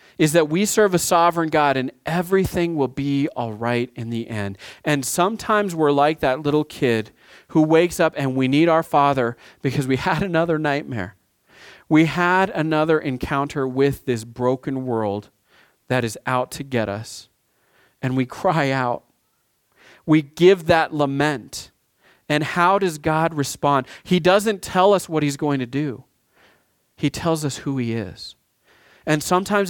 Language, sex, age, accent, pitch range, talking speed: English, male, 40-59, American, 140-195 Hz, 160 wpm